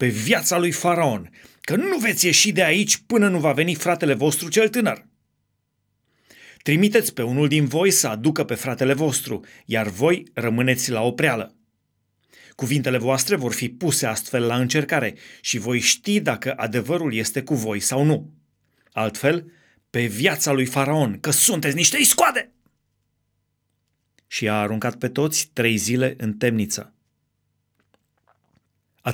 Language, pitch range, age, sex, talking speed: Romanian, 120-175 Hz, 30-49, male, 145 wpm